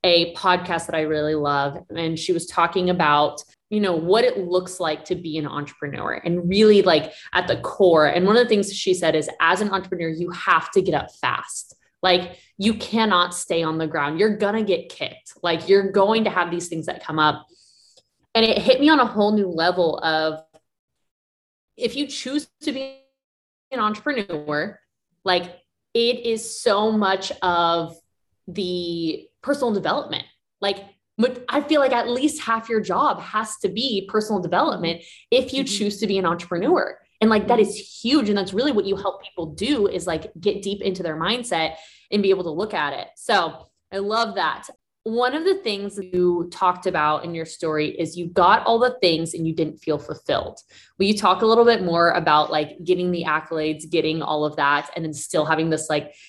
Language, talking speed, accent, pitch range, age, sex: English, 200 wpm, American, 160-215 Hz, 20-39, female